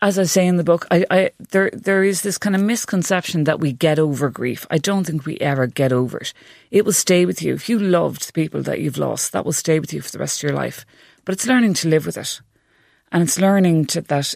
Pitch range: 145-185 Hz